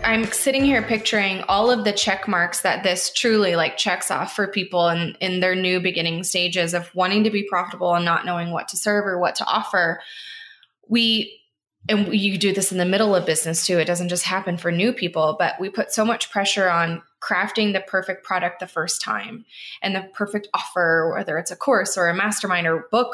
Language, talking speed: English, 220 wpm